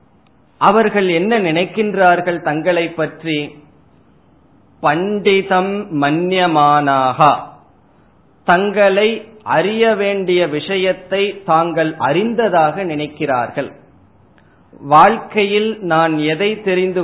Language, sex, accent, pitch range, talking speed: Tamil, male, native, 150-195 Hz, 60 wpm